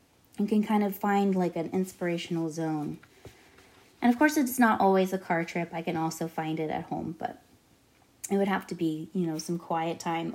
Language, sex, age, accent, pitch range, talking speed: English, female, 20-39, American, 170-210 Hz, 210 wpm